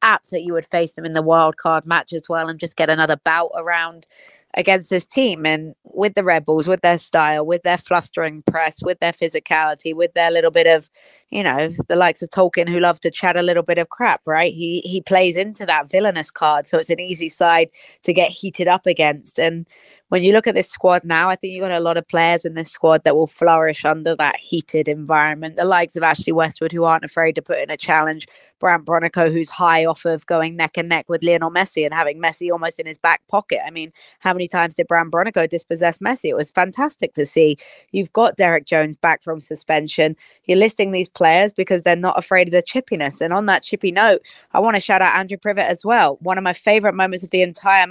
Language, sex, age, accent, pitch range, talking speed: English, female, 20-39, British, 165-190 Hz, 235 wpm